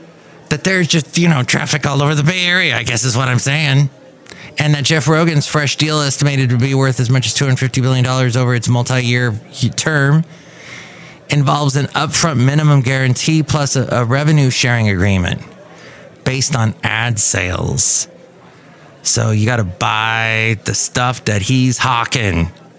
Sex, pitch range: male, 120-155 Hz